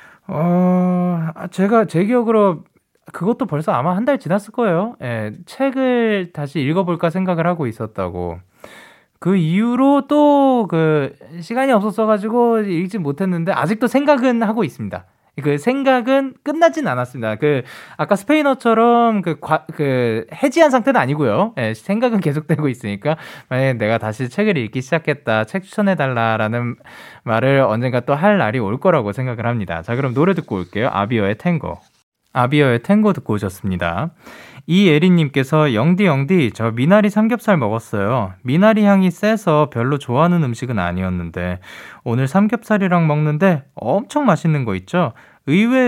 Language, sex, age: Korean, male, 20-39